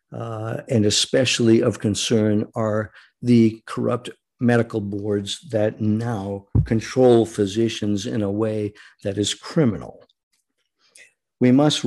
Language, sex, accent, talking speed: English, male, American, 110 wpm